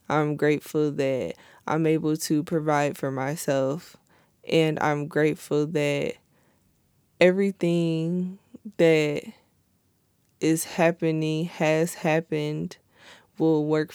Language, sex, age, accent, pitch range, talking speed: English, female, 20-39, American, 150-170 Hz, 90 wpm